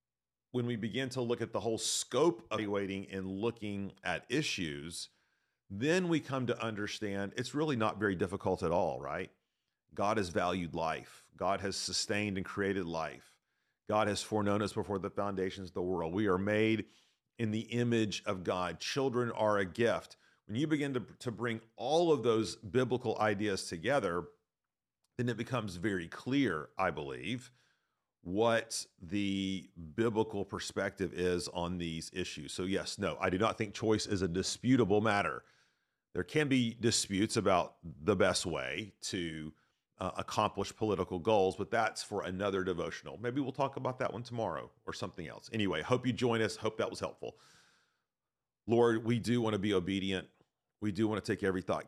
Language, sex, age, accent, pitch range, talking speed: English, male, 40-59, American, 90-115 Hz, 175 wpm